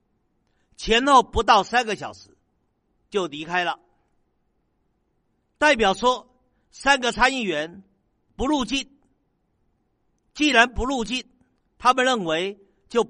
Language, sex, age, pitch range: Chinese, male, 50-69, 185-250 Hz